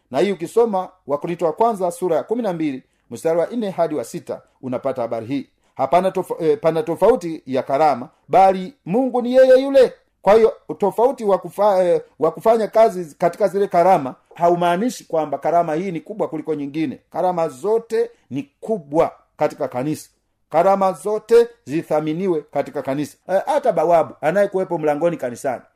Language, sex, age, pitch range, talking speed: Swahili, male, 50-69, 150-200 Hz, 150 wpm